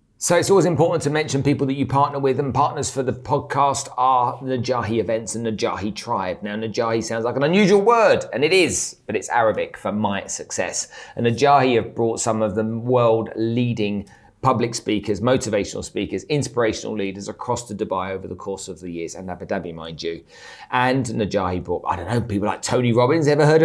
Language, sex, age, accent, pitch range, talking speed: English, male, 40-59, British, 100-130 Hz, 200 wpm